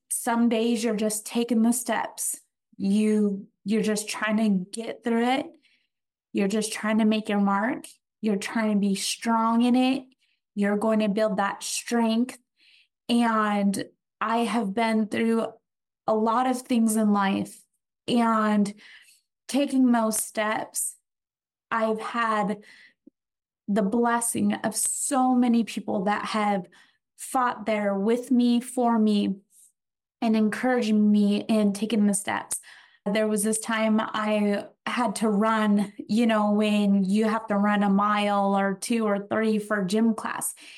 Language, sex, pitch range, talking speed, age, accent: English, female, 205-240 Hz, 145 wpm, 20-39, American